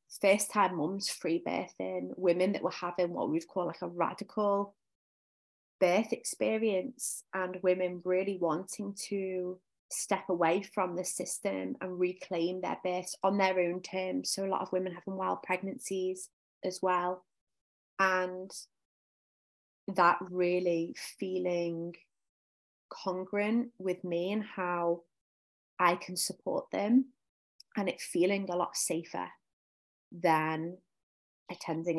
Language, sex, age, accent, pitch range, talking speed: English, female, 20-39, British, 170-190 Hz, 125 wpm